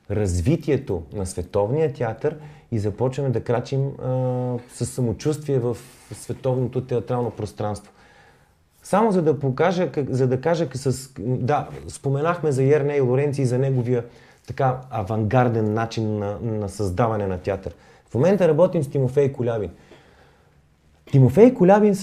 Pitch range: 110-145 Hz